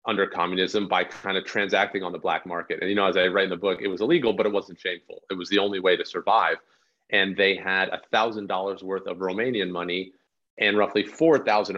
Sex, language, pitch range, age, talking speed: male, English, 95-105 Hz, 30-49, 235 wpm